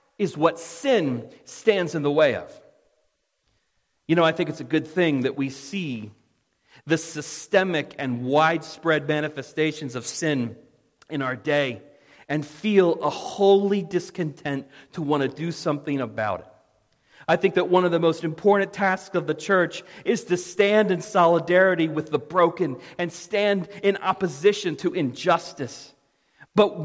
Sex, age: male, 40-59